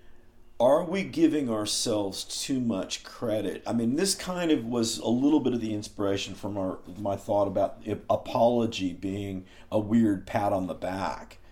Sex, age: male, 50-69